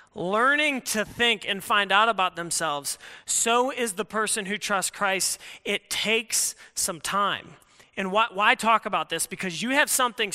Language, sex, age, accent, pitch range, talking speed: English, male, 30-49, American, 210-250 Hz, 170 wpm